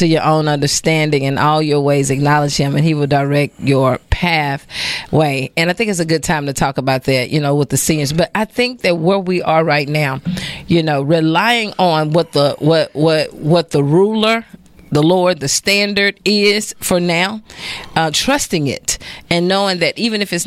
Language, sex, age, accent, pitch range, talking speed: English, female, 40-59, American, 155-190 Hz, 200 wpm